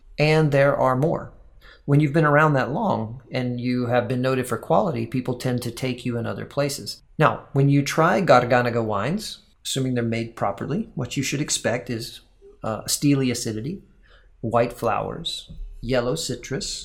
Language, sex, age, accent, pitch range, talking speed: English, male, 40-59, American, 115-140 Hz, 165 wpm